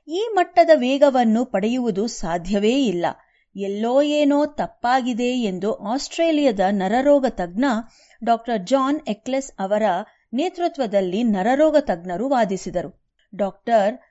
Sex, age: female, 30-49